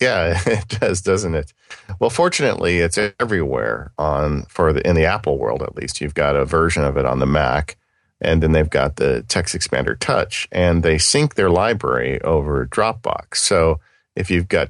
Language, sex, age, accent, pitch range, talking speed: English, male, 40-59, American, 80-100 Hz, 190 wpm